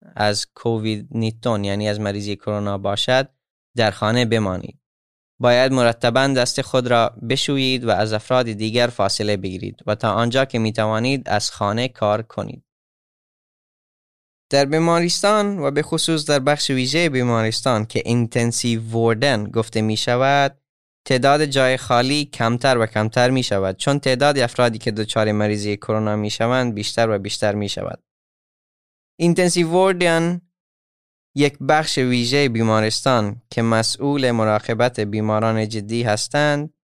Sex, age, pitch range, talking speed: male, 10-29, 110-135 Hz, 130 wpm